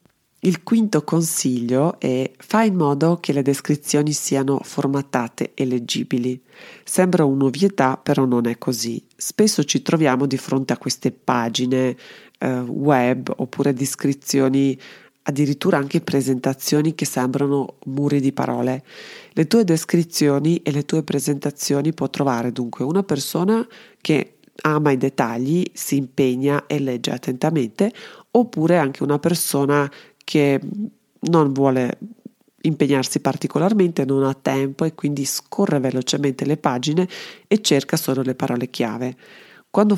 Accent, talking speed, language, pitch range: native, 130 wpm, Italian, 130-160 Hz